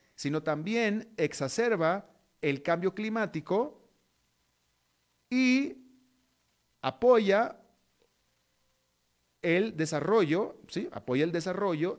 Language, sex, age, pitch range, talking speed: Spanish, male, 40-59, 140-195 Hz, 55 wpm